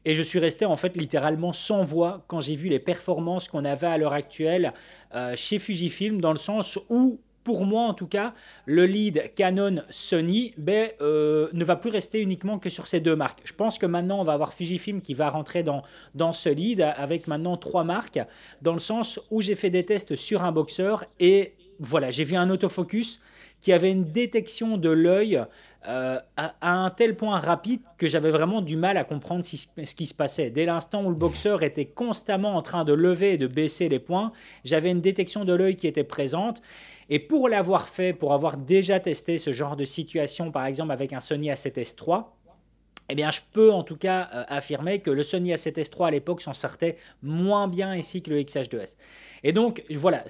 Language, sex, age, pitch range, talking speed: French, male, 30-49, 155-200 Hz, 210 wpm